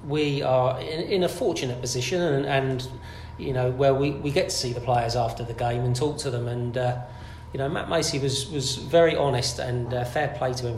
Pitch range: 125-140 Hz